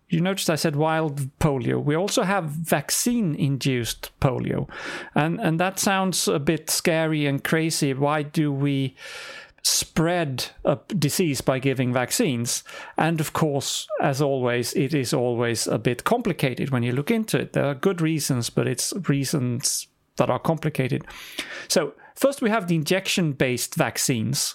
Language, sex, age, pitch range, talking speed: English, male, 40-59, 140-175 Hz, 150 wpm